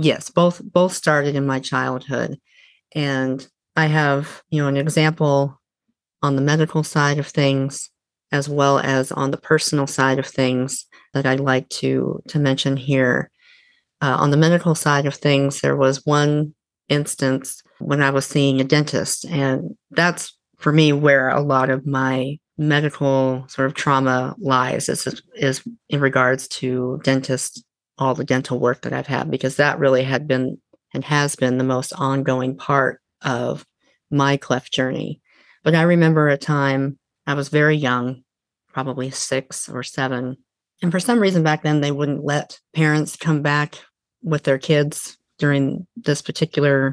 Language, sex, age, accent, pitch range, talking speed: English, female, 40-59, American, 130-150 Hz, 160 wpm